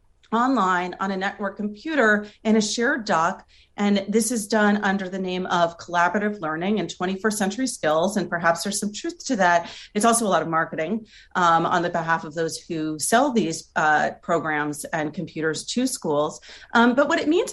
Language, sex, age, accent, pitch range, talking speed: English, female, 40-59, American, 170-225 Hz, 190 wpm